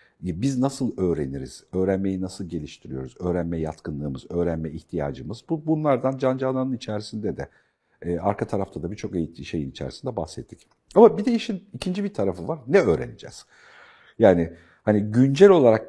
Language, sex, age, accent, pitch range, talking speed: Turkish, male, 50-69, native, 90-130 Hz, 140 wpm